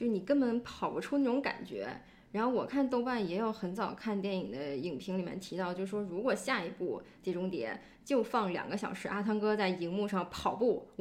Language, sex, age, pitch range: Chinese, female, 20-39, 190-250 Hz